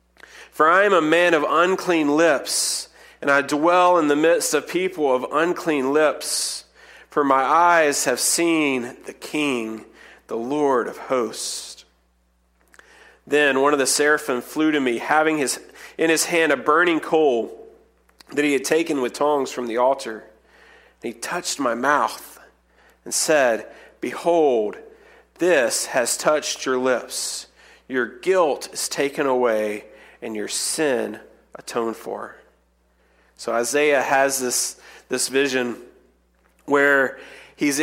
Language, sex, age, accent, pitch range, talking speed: English, male, 40-59, American, 120-160 Hz, 135 wpm